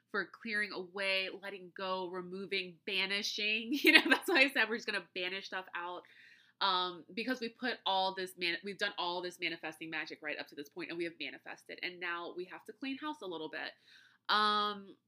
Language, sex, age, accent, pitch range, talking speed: English, female, 20-39, American, 175-220 Hz, 195 wpm